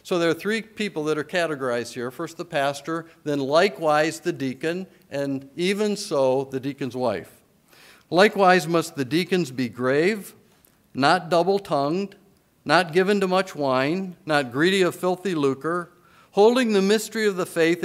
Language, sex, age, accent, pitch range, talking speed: English, male, 50-69, American, 140-190 Hz, 155 wpm